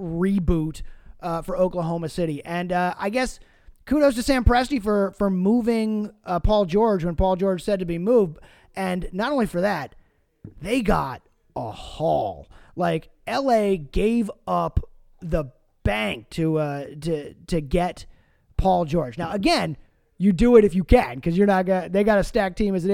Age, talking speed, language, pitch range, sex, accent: 30-49, 175 wpm, English, 170-225 Hz, male, American